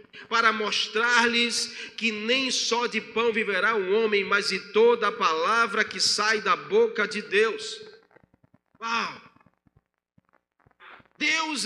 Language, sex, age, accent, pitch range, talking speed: Portuguese, male, 40-59, Brazilian, 225-275 Hz, 125 wpm